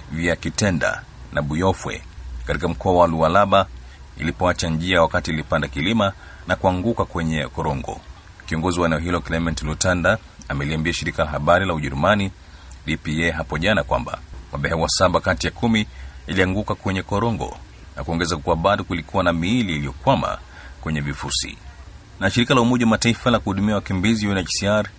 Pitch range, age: 80-95 Hz, 40-59